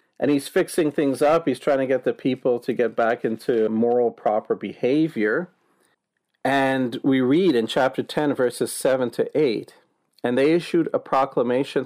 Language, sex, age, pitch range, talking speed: English, male, 40-59, 115-150 Hz, 165 wpm